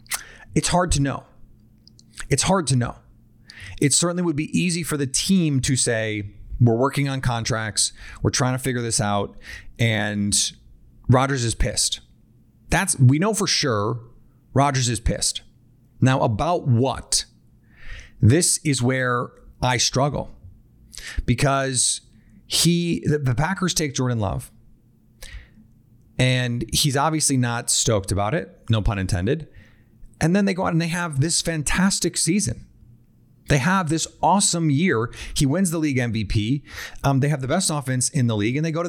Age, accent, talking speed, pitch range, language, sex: 30-49, American, 155 wpm, 110-145 Hz, English, male